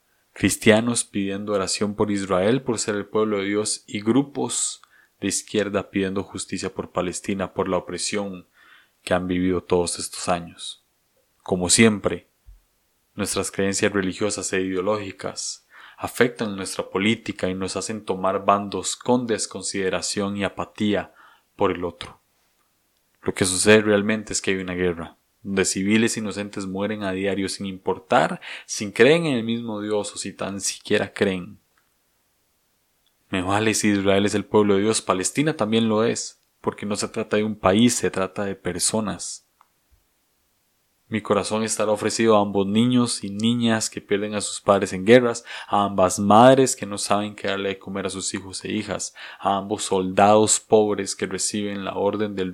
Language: Spanish